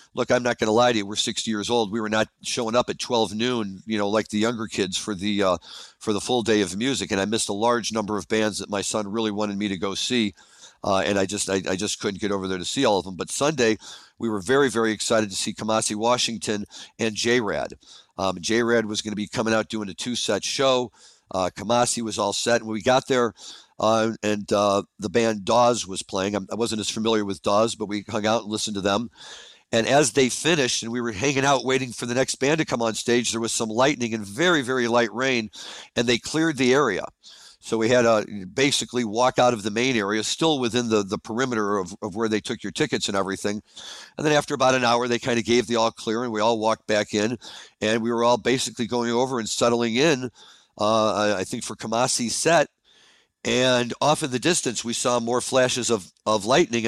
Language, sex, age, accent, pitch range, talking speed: English, male, 50-69, American, 105-120 Hz, 240 wpm